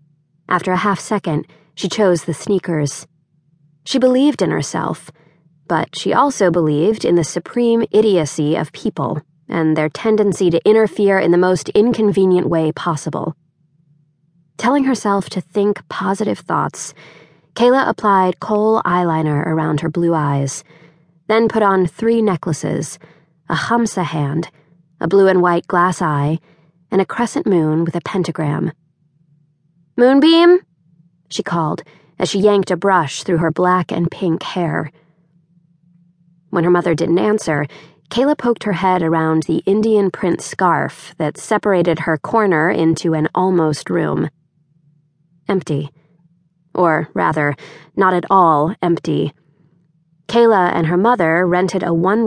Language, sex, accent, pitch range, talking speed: English, female, American, 155-195 Hz, 135 wpm